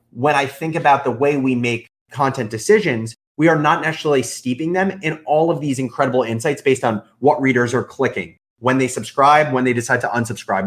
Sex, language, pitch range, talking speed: male, English, 115-150 Hz, 200 wpm